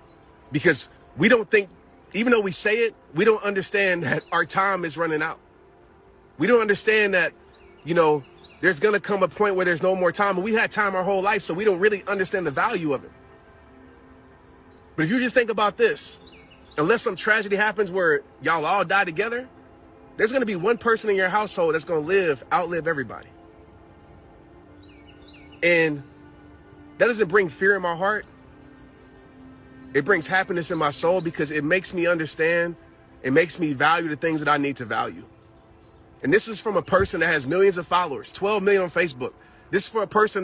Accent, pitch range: American, 155-205 Hz